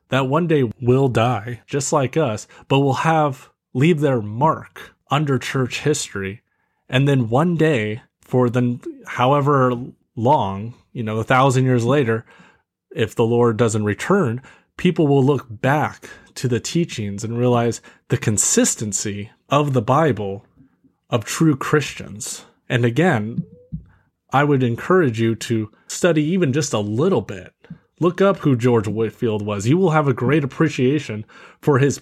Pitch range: 115-145 Hz